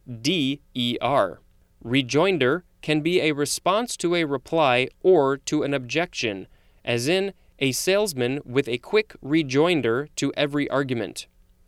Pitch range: 120-160 Hz